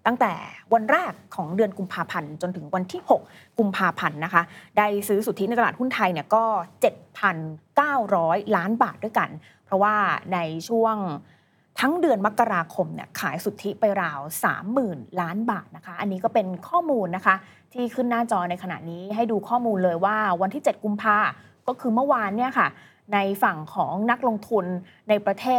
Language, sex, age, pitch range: Thai, female, 20-39, 180-230 Hz